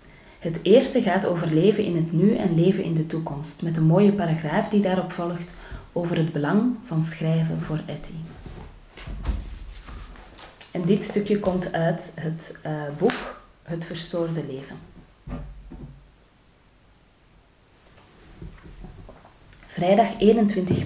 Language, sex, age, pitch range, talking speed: Dutch, female, 30-49, 160-200 Hz, 115 wpm